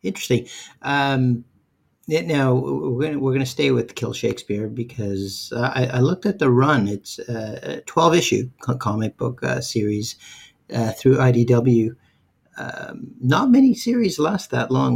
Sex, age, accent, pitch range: male, 50-69, American, 110-130 Hz